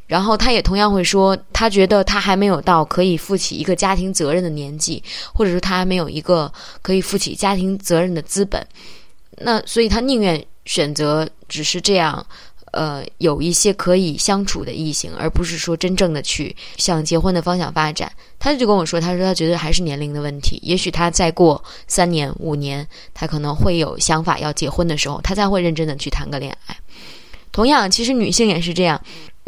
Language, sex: English, female